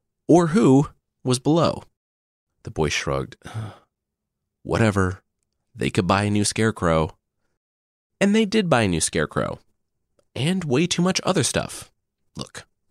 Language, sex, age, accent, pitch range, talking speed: English, male, 30-49, American, 95-150 Hz, 130 wpm